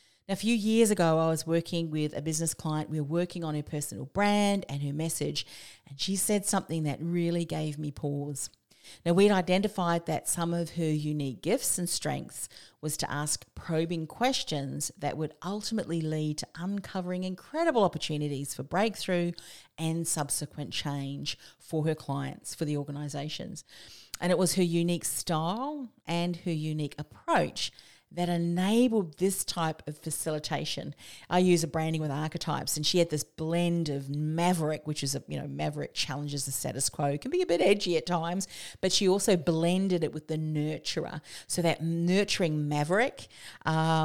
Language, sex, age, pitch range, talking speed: English, female, 40-59, 150-175 Hz, 170 wpm